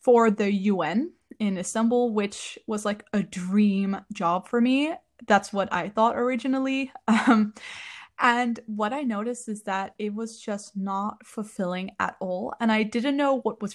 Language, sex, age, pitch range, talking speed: English, female, 20-39, 200-245 Hz, 165 wpm